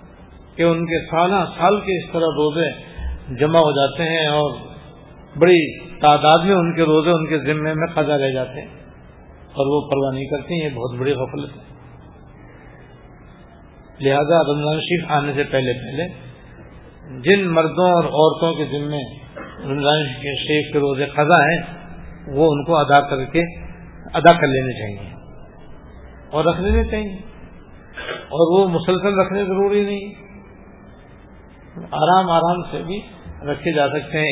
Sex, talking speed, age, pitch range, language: male, 145 wpm, 50-69, 135-170 Hz, English